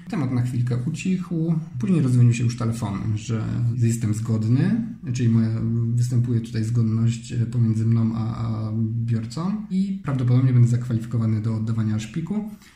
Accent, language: native, Polish